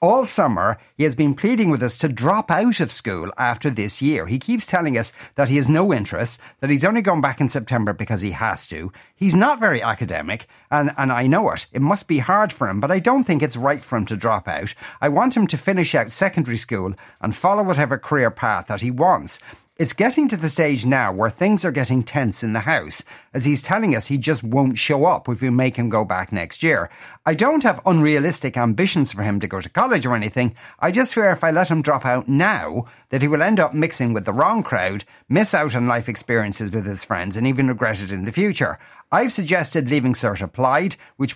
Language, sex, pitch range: English, male, 115-165 Hz